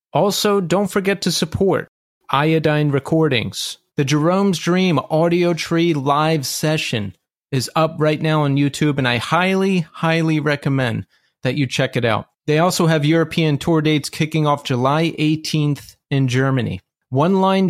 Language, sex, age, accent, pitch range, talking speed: English, male, 30-49, American, 140-170 Hz, 150 wpm